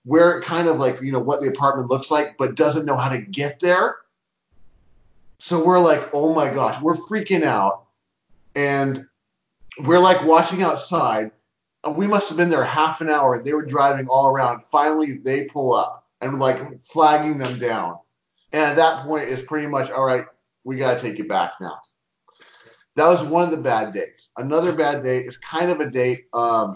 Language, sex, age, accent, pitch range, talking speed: English, male, 30-49, American, 125-160 Hz, 195 wpm